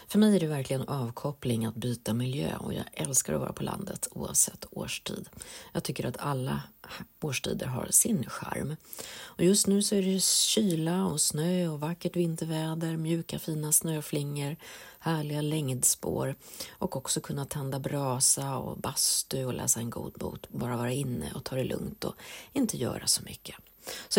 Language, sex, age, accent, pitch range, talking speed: Swedish, female, 40-59, native, 130-185 Hz, 170 wpm